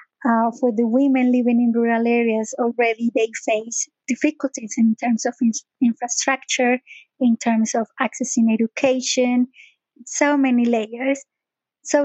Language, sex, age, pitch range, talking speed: English, female, 30-49, 235-275 Hz, 130 wpm